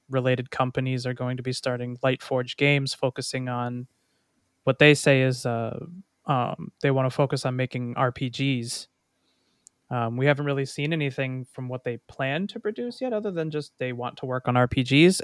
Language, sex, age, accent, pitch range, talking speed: English, male, 20-39, American, 125-145 Hz, 185 wpm